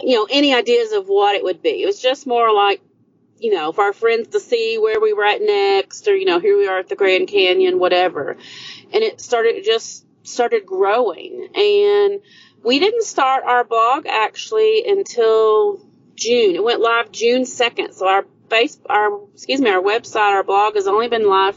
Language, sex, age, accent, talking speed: English, female, 30-49, American, 200 wpm